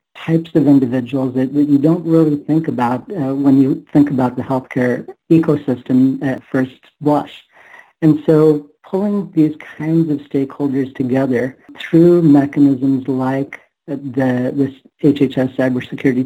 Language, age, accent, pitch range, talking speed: English, 50-69, American, 130-140 Hz, 135 wpm